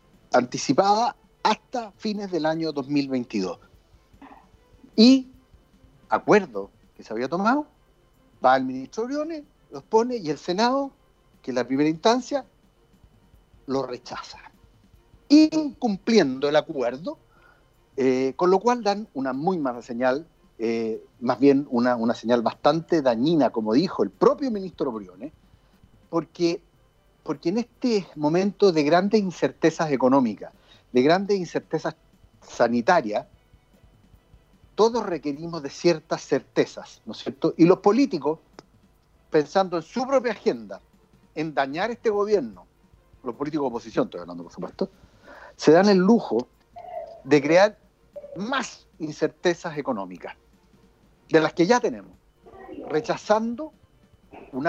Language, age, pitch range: Spanish, 50-69, 145-225 Hz